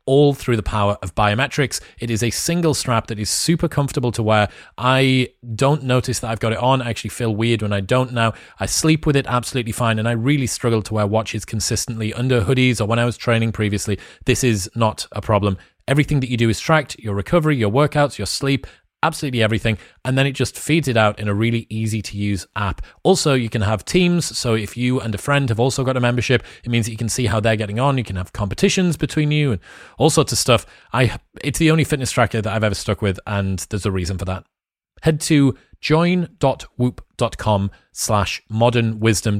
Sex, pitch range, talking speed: male, 105-135 Hz, 225 wpm